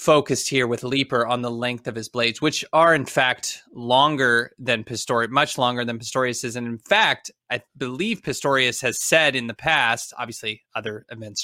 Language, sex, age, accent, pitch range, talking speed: English, male, 20-39, American, 120-140 Hz, 190 wpm